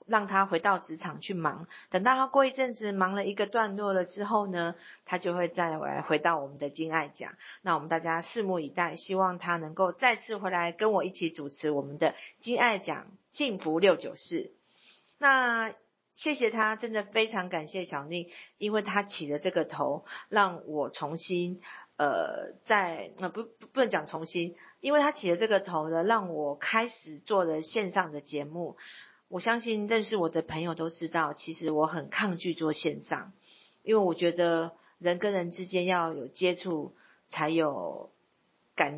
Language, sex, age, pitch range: Chinese, female, 50-69, 160-210 Hz